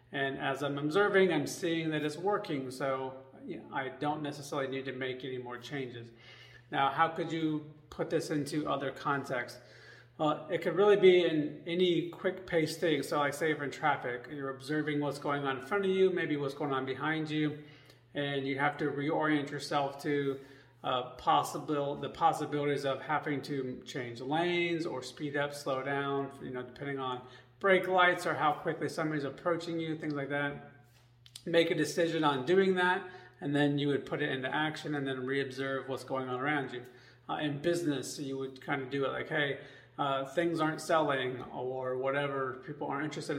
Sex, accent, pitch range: male, American, 135-155 Hz